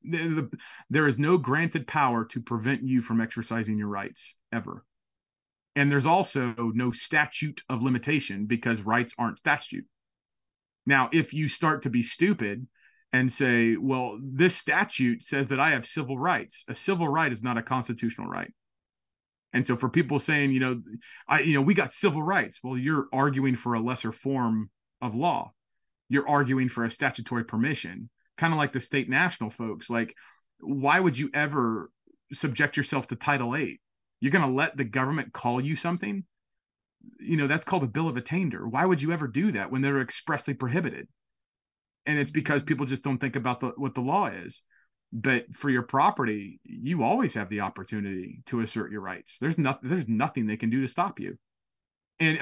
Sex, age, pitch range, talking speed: male, 30-49, 120-155 Hz, 185 wpm